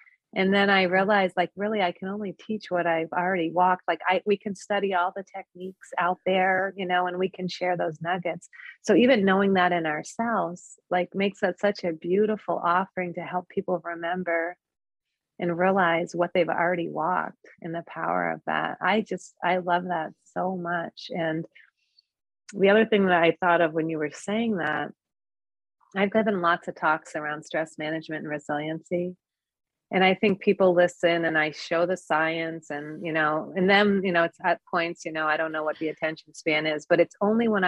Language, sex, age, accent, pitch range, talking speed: English, female, 30-49, American, 165-195 Hz, 195 wpm